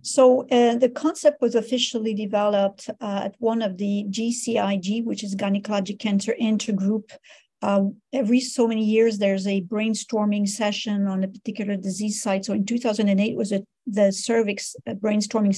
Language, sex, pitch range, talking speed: English, female, 200-225 Hz, 155 wpm